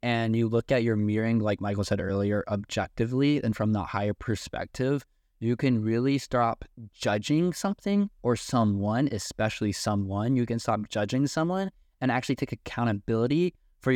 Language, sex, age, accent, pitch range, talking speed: English, male, 10-29, American, 105-115 Hz, 155 wpm